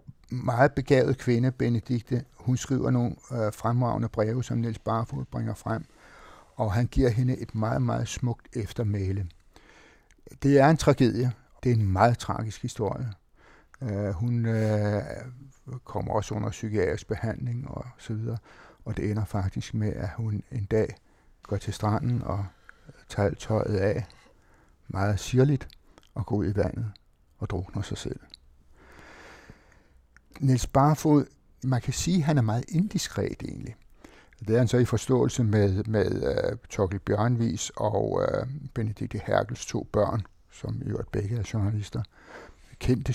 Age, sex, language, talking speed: 60-79, male, Danish, 145 wpm